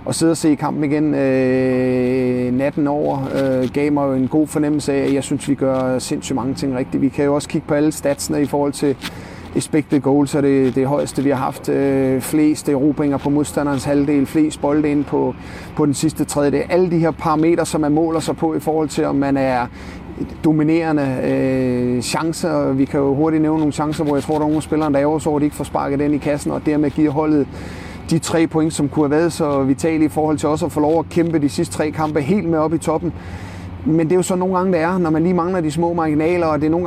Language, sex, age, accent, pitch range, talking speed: Danish, male, 30-49, native, 140-160 Hz, 250 wpm